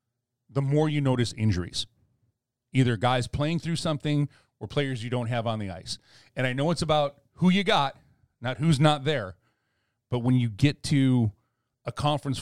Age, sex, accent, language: 40-59, male, American, English